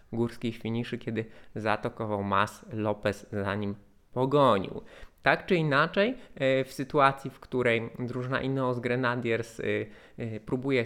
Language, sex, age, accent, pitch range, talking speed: Polish, male, 20-39, native, 115-140 Hz, 110 wpm